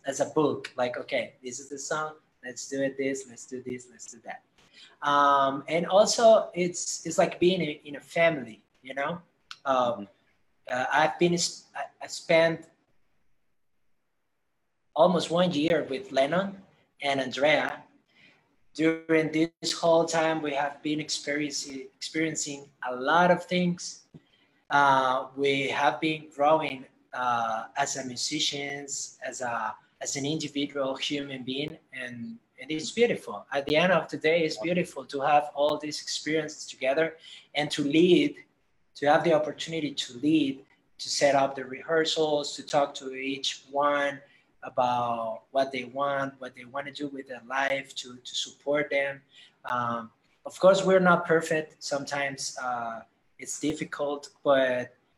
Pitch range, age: 135-160 Hz, 20-39